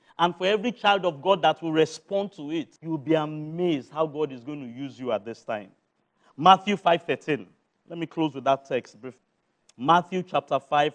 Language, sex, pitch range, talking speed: English, male, 145-195 Hz, 195 wpm